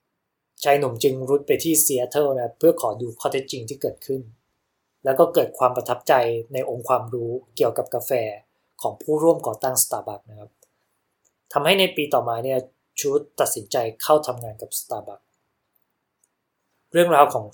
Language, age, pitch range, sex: Thai, 20-39, 120-155 Hz, male